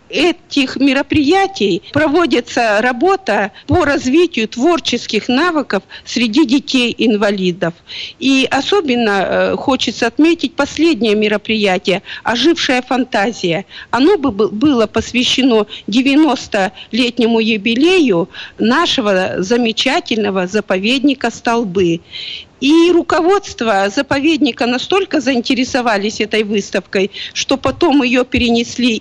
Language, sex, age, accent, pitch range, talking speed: Russian, female, 50-69, native, 210-280 Hz, 80 wpm